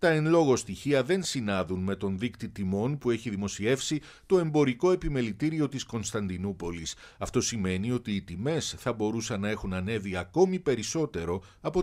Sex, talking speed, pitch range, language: male, 155 wpm, 95-135 Hz, Greek